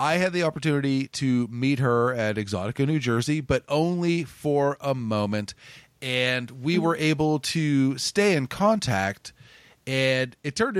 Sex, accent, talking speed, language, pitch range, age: male, American, 150 wpm, English, 110-140 Hz, 30-49